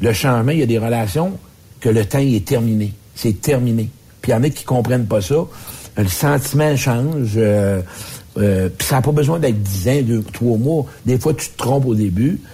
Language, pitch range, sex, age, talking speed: French, 115-140 Hz, male, 60-79, 230 wpm